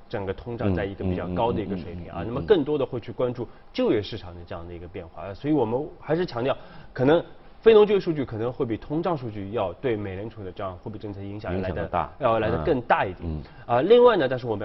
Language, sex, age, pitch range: Chinese, male, 20-39, 100-135 Hz